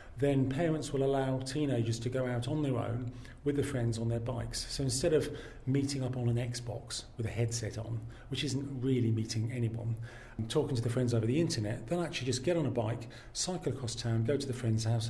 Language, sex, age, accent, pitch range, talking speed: English, male, 40-59, British, 115-135 Hz, 225 wpm